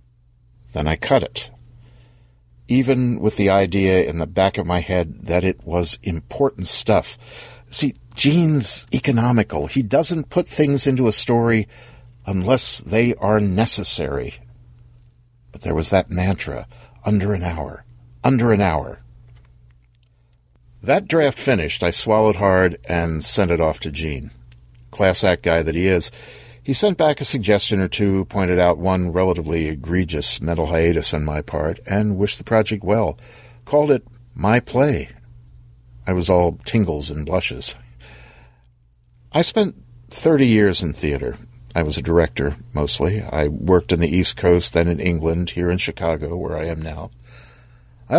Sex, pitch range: male, 80-120 Hz